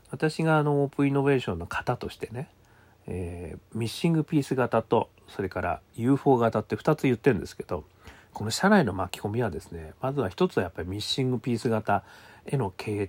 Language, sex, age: Japanese, male, 40-59